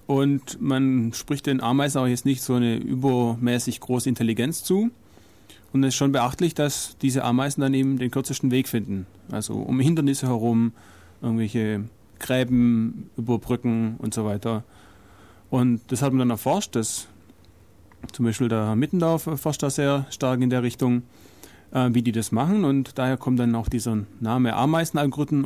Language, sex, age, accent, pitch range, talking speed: German, male, 30-49, German, 110-140 Hz, 165 wpm